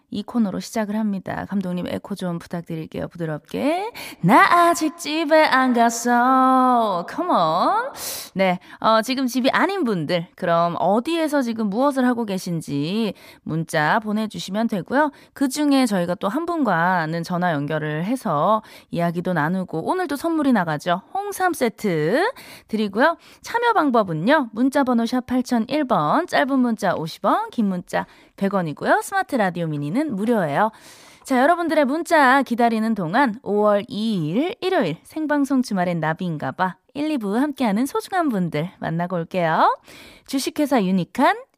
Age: 20-39